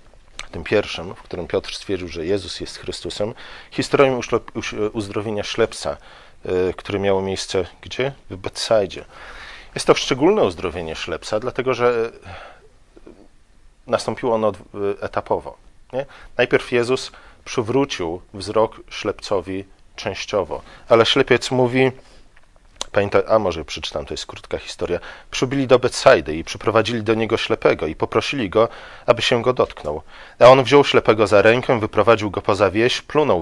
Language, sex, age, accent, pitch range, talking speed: Polish, male, 40-59, native, 100-125 Hz, 130 wpm